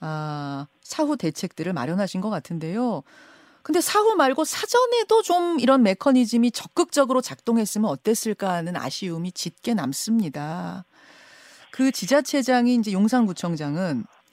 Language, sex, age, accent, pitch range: Korean, female, 40-59, native, 195-290 Hz